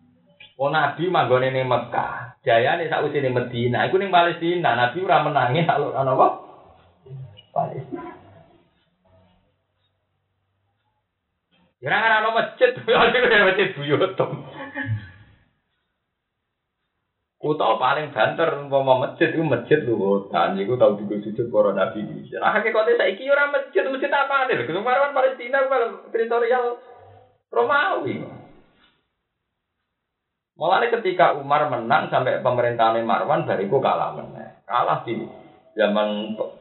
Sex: male